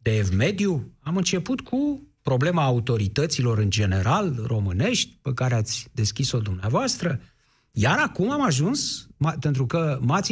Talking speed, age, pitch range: 135 wpm, 50-69, 125-160 Hz